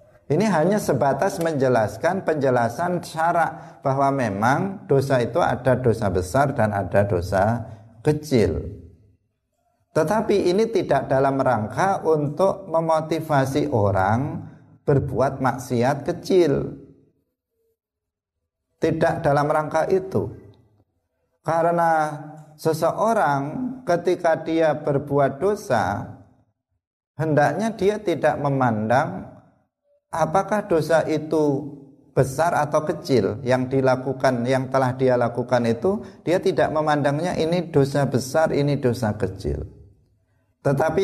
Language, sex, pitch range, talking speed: Indonesian, male, 125-160 Hz, 95 wpm